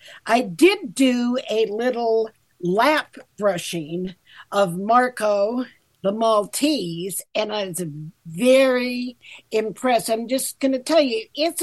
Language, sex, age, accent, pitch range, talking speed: English, female, 50-69, American, 200-245 Hz, 120 wpm